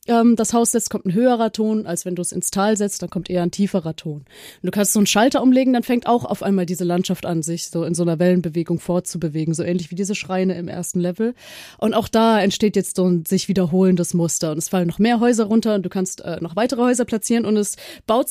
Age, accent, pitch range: 30-49, German, 180-230 Hz